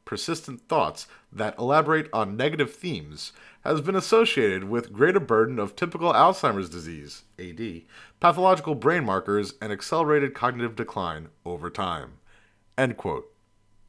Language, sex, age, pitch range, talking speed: English, male, 30-49, 110-165 Hz, 120 wpm